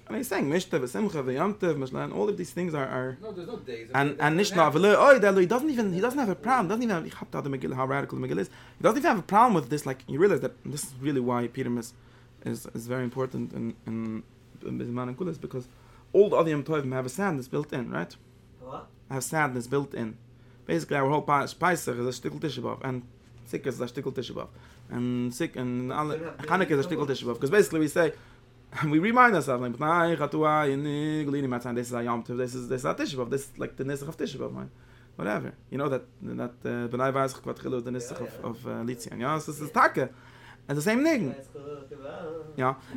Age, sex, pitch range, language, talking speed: 30-49, male, 125-165 Hz, English, 190 wpm